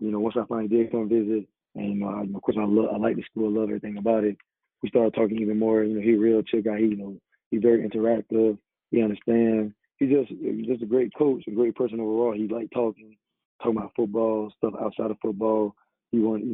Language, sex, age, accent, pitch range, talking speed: English, male, 20-39, American, 105-115 Hz, 235 wpm